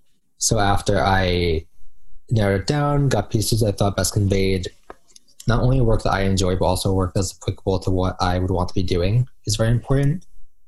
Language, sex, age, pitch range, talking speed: English, male, 20-39, 95-110 Hz, 190 wpm